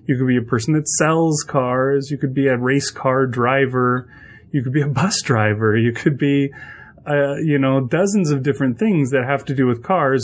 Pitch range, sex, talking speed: 115-145 Hz, male, 215 wpm